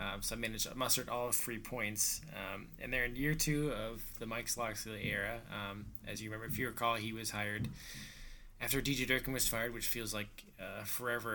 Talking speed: 200 wpm